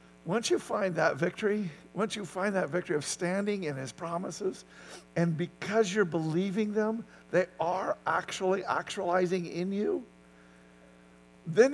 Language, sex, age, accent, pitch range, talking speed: English, male, 50-69, American, 155-205 Hz, 140 wpm